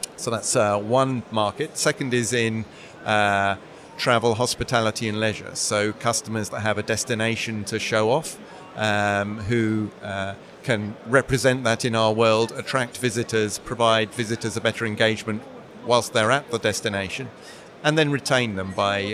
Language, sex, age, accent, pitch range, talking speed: English, male, 40-59, British, 110-125 Hz, 150 wpm